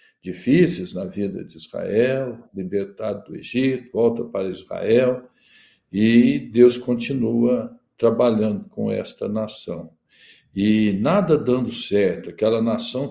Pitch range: 110-140 Hz